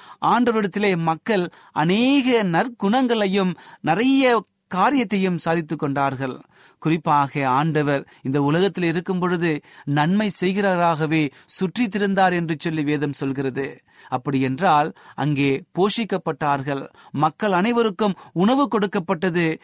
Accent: native